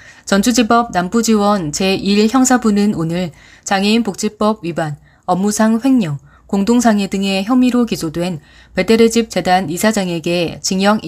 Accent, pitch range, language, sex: native, 175-230 Hz, Korean, female